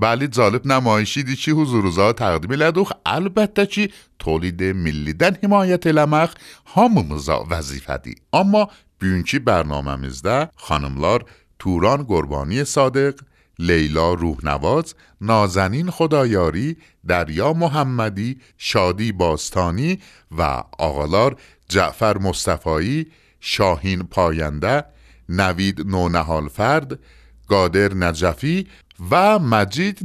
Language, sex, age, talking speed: Persian, male, 50-69, 90 wpm